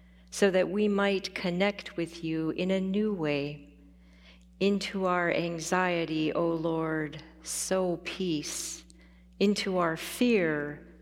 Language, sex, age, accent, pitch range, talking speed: English, female, 40-59, American, 150-195 Hz, 115 wpm